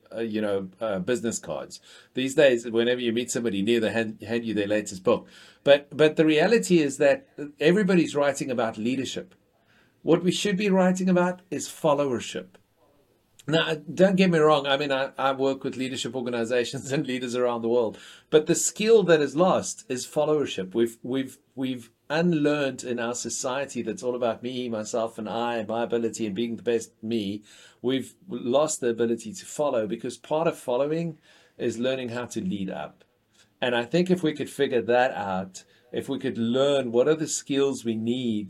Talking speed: 190 wpm